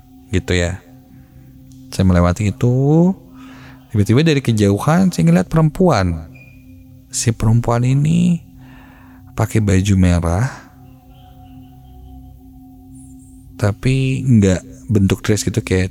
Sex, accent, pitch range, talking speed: male, native, 90-130 Hz, 85 wpm